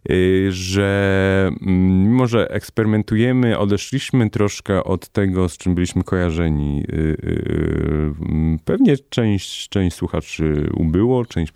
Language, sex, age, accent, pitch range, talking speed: Polish, male, 30-49, native, 85-110 Hz, 95 wpm